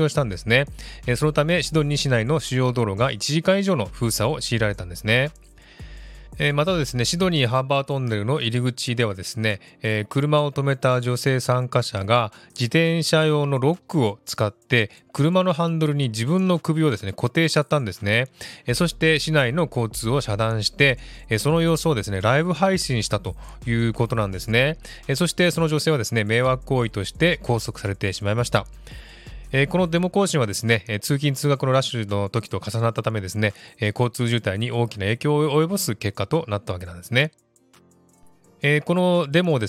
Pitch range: 110-150 Hz